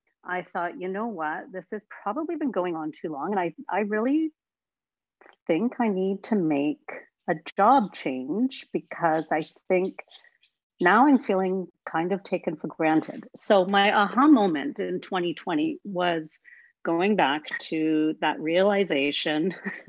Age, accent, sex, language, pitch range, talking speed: 50-69, American, female, English, 170-235 Hz, 145 wpm